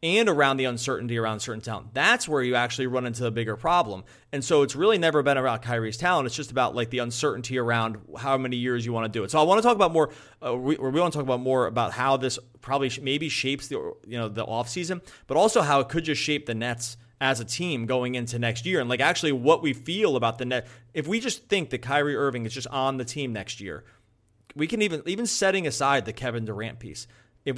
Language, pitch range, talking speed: English, 120-140 Hz, 260 wpm